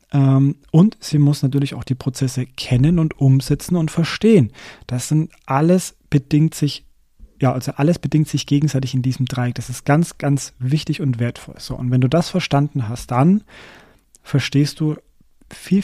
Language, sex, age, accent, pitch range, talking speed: German, male, 40-59, German, 125-150 Hz, 165 wpm